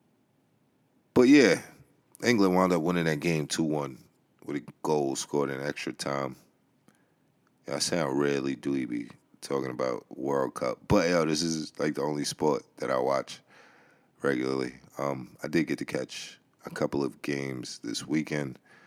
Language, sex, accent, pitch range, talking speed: English, male, American, 70-80 Hz, 165 wpm